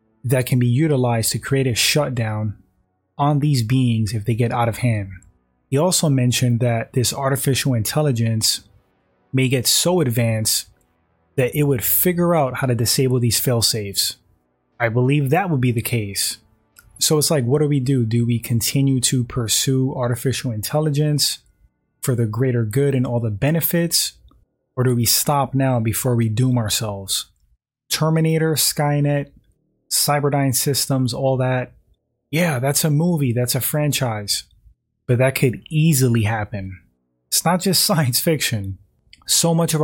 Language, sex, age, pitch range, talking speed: English, male, 20-39, 115-140 Hz, 155 wpm